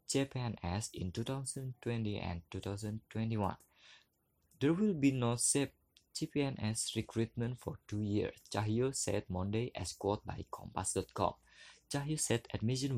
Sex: male